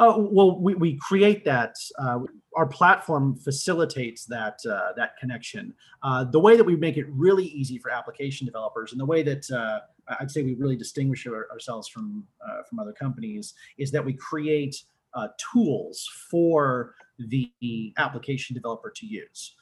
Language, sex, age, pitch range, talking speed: English, male, 30-49, 125-170 Hz, 170 wpm